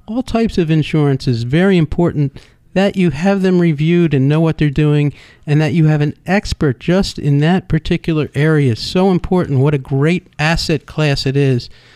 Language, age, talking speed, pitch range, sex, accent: English, 50-69, 185 wpm, 120-150 Hz, male, American